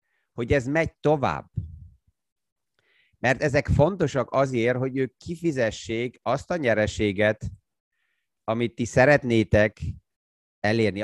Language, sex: Hungarian, male